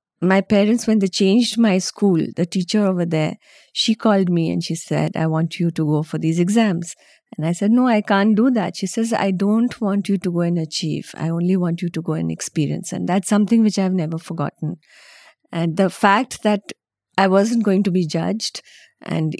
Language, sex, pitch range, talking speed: English, female, 170-205 Hz, 215 wpm